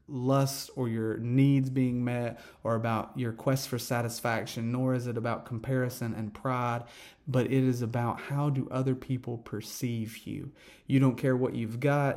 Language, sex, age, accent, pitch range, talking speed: English, male, 30-49, American, 115-130 Hz, 175 wpm